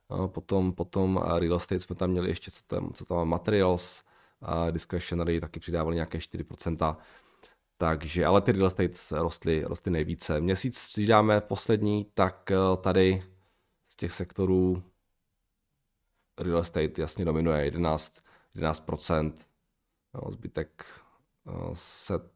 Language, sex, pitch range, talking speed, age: Czech, male, 85-115 Hz, 110 wpm, 20-39